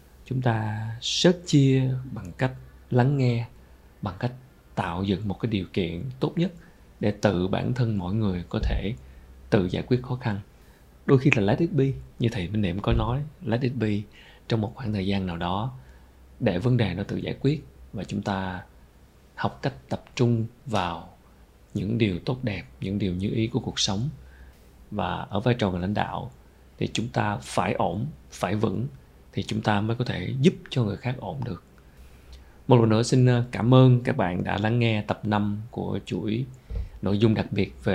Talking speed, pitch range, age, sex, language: 200 wpm, 95-120 Hz, 20-39, male, Vietnamese